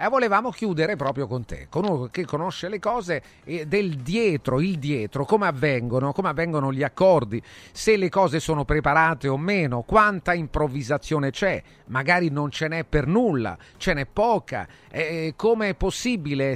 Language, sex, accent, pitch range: Italian, male, native, 130-180 Hz